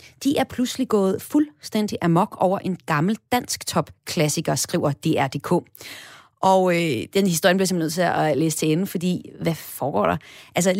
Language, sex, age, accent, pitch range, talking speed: Danish, female, 30-49, native, 170-220 Hz, 165 wpm